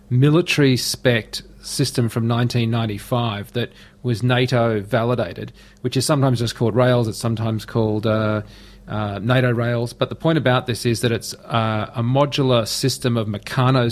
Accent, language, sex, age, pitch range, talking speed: Australian, English, male, 40-59, 110-130 Hz, 150 wpm